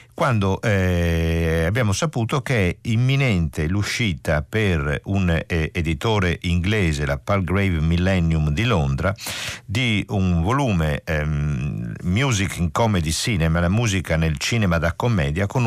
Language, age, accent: Italian, 50-69, native